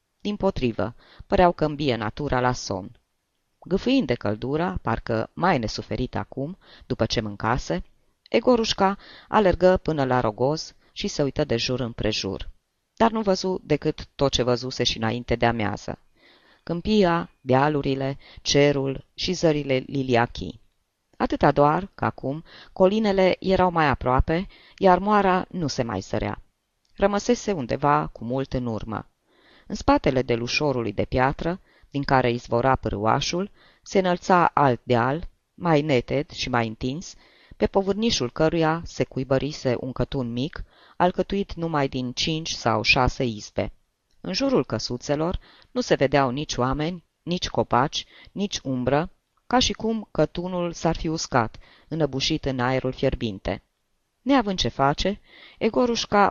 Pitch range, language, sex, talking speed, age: 125-180 Hz, Romanian, female, 135 wpm, 20-39